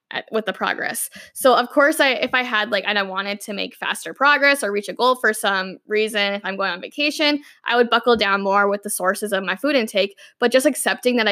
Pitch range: 205-265 Hz